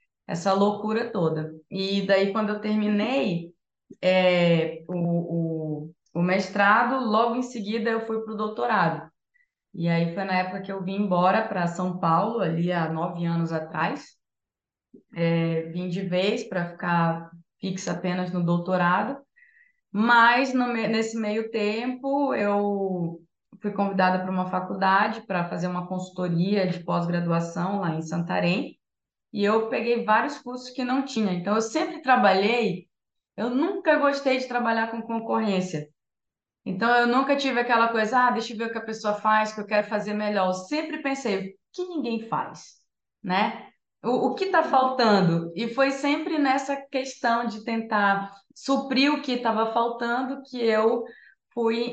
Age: 20-39